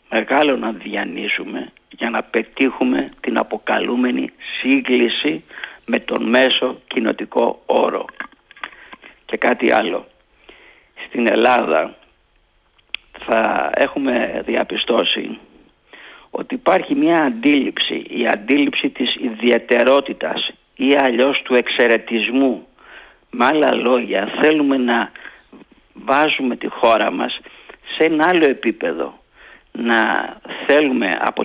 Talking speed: 95 wpm